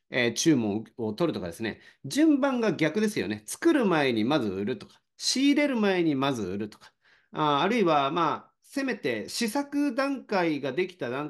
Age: 40-59